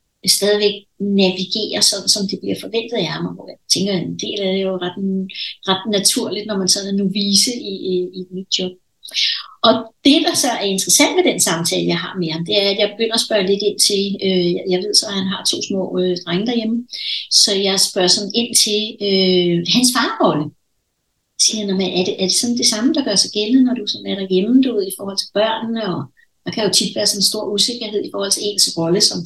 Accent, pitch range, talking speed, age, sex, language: native, 190-245 Hz, 230 wpm, 60-79, female, Danish